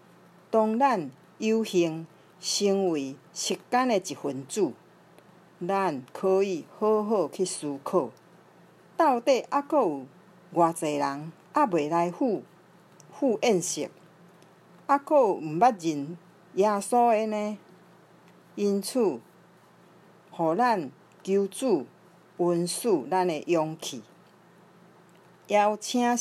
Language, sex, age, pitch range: Chinese, female, 50-69, 165-210 Hz